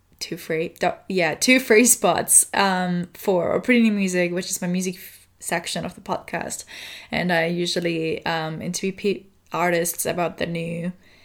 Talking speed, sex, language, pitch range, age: 165 wpm, female, English, 165-190 Hz, 10-29